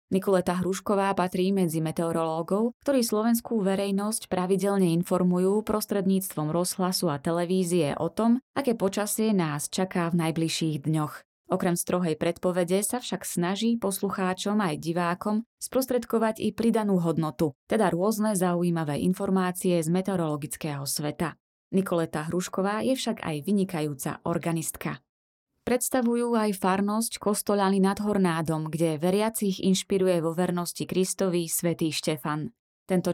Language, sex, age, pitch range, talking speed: Slovak, female, 20-39, 165-205 Hz, 120 wpm